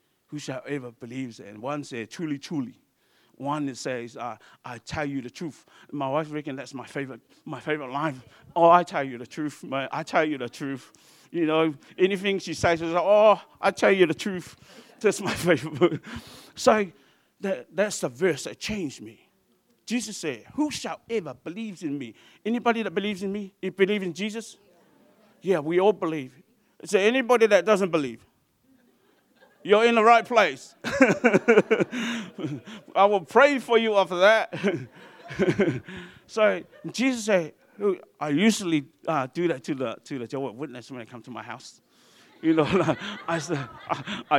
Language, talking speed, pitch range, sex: English, 170 wpm, 145-205 Hz, male